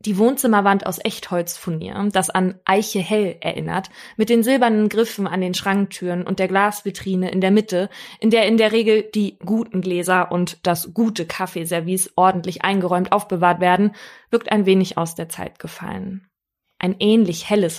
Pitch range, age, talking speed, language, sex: 180-215 Hz, 20-39, 160 wpm, German, female